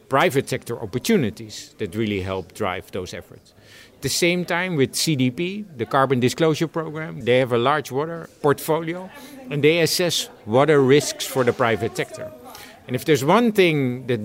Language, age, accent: English, 50-69, Dutch